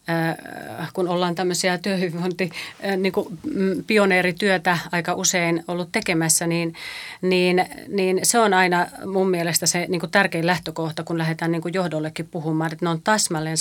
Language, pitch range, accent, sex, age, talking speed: Finnish, 165-185 Hz, native, female, 30-49, 140 wpm